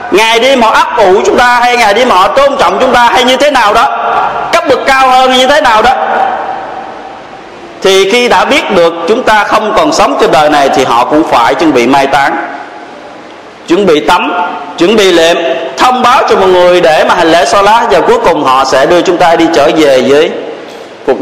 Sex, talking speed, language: male, 230 wpm, Vietnamese